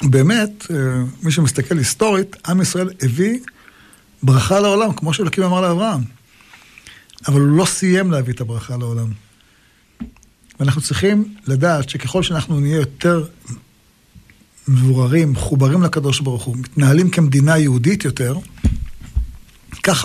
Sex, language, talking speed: male, Hebrew, 115 wpm